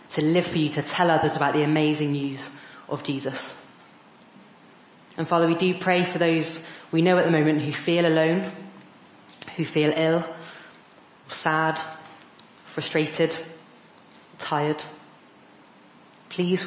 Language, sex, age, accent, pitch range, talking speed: English, female, 30-49, British, 150-165 Hz, 125 wpm